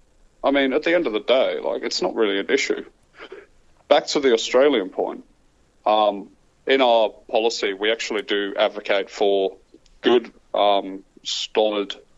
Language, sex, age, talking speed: English, male, 30-49, 155 wpm